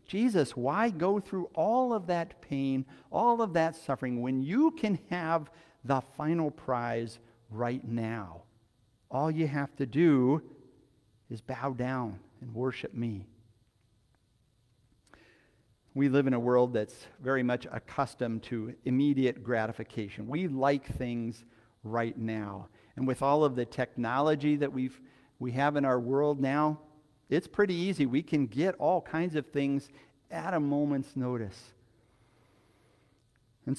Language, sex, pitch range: English, male, 120-160 Hz